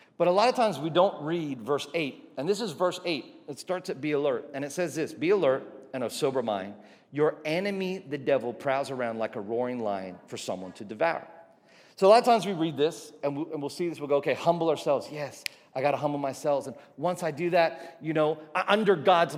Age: 40-59